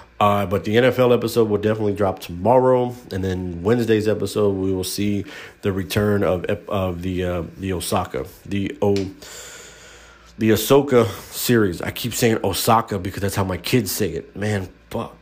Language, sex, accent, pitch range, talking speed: English, male, American, 100-120 Hz, 165 wpm